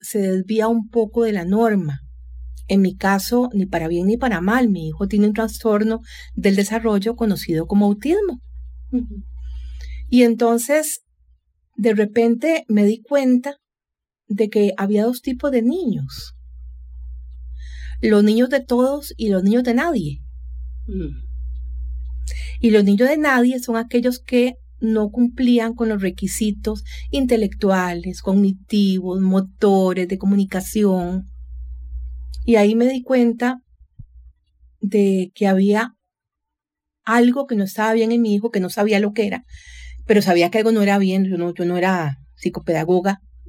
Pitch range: 160-225 Hz